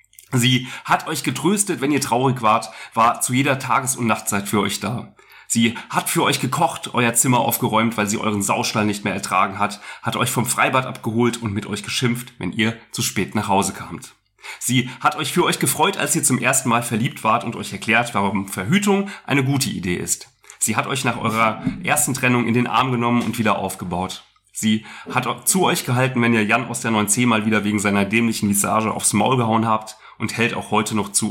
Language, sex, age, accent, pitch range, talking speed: German, male, 30-49, German, 105-130 Hz, 215 wpm